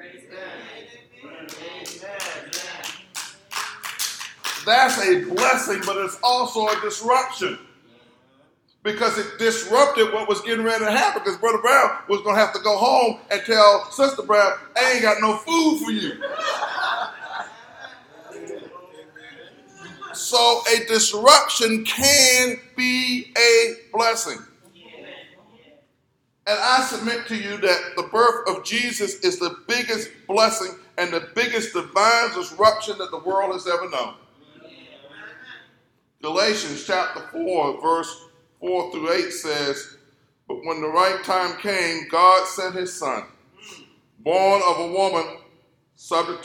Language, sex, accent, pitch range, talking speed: English, male, American, 175-230 Hz, 120 wpm